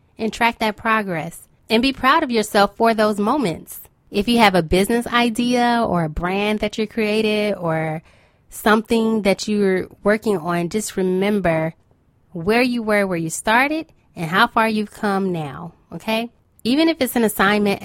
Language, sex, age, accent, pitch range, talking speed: English, female, 20-39, American, 180-220 Hz, 170 wpm